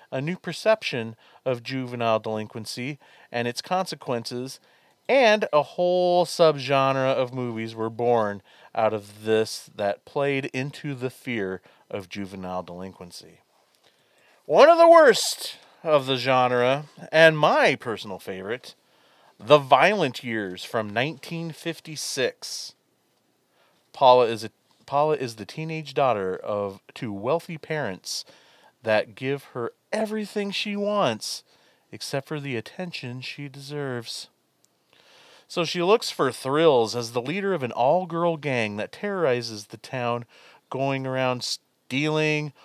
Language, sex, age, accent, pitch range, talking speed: English, male, 40-59, American, 115-155 Hz, 120 wpm